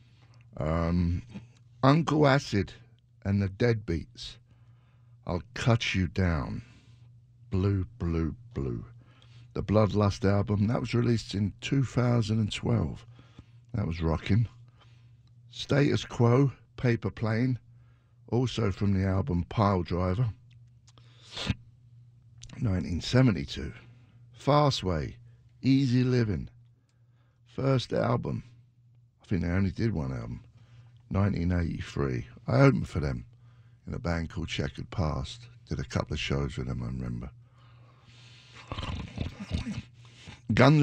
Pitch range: 95-120 Hz